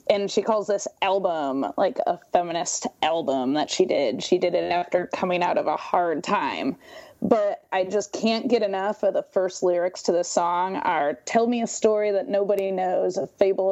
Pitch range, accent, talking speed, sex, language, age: 185-220 Hz, American, 195 wpm, female, English, 20-39